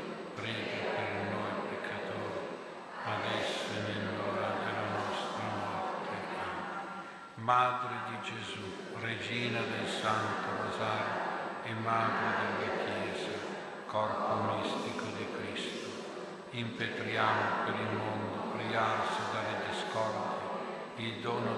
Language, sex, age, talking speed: Italian, male, 60-79, 95 wpm